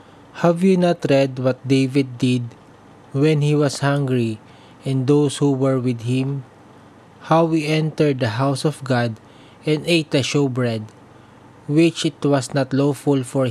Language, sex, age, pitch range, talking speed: English, male, 20-39, 130-150 Hz, 155 wpm